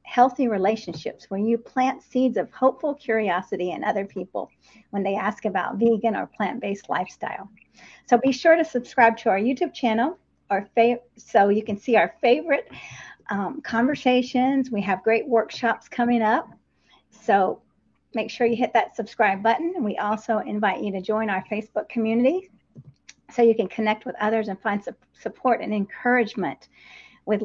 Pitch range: 210-255 Hz